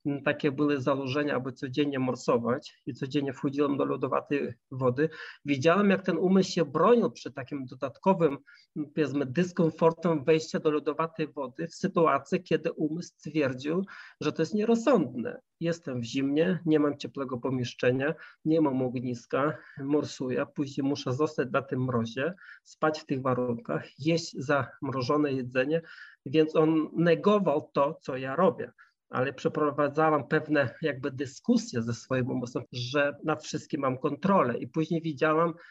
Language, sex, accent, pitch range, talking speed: Polish, male, native, 135-165 Hz, 140 wpm